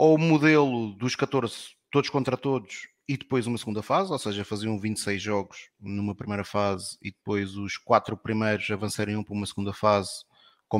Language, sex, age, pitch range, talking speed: Portuguese, male, 20-39, 100-115 Hz, 185 wpm